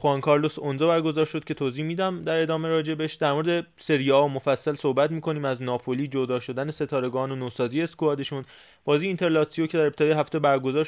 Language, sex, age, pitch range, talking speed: Persian, male, 20-39, 130-160 Hz, 195 wpm